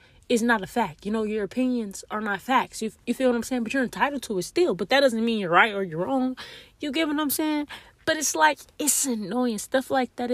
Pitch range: 205-265 Hz